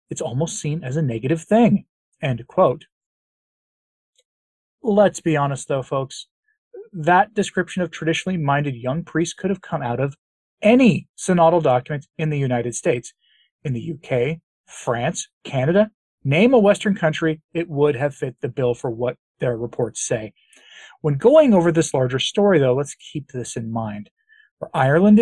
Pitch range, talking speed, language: 135-200 Hz, 160 wpm, English